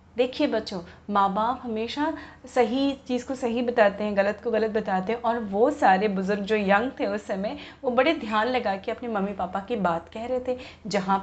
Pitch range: 200-250 Hz